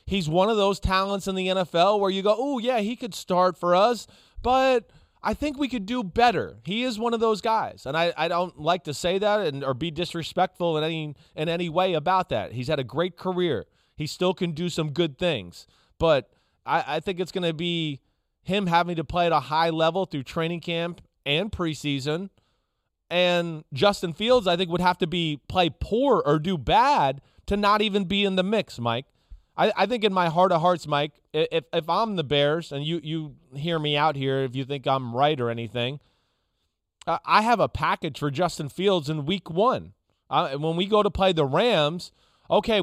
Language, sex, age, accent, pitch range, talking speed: English, male, 30-49, American, 155-195 Hz, 210 wpm